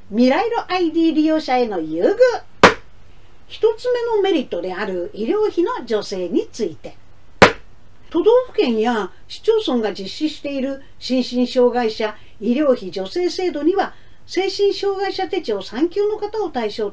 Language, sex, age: Japanese, female, 50-69